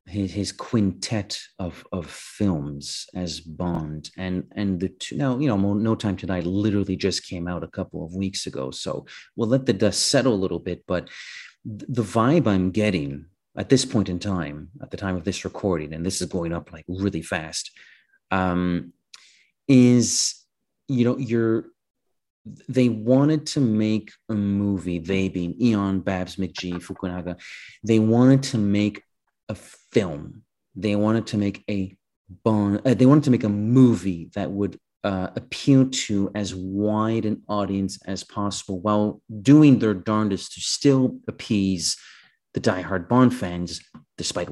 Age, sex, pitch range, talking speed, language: 30-49, male, 90-115 Hz, 160 wpm, English